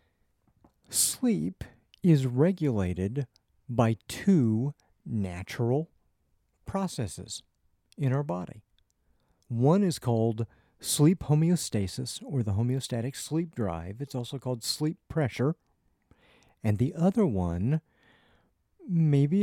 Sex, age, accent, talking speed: male, 50-69, American, 95 wpm